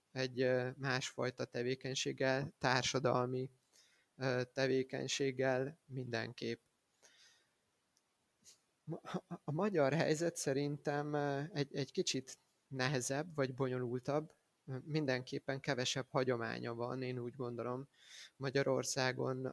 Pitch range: 125-140 Hz